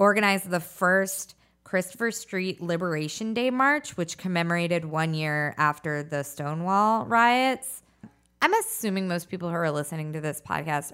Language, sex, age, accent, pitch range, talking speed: English, female, 20-39, American, 140-175 Hz, 145 wpm